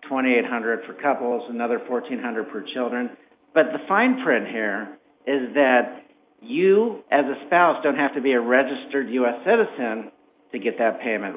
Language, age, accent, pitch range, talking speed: English, 50-69, American, 120-150 Hz, 160 wpm